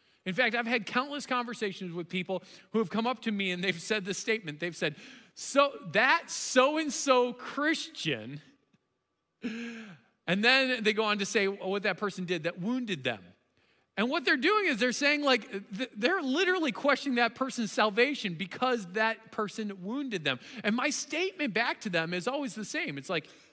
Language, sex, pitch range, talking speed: English, male, 215-290 Hz, 180 wpm